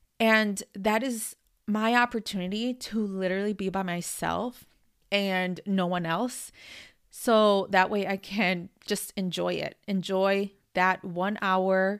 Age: 20-39